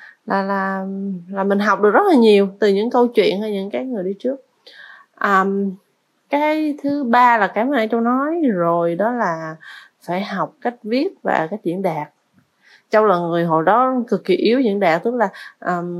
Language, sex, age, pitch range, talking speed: Vietnamese, female, 20-39, 195-255 Hz, 200 wpm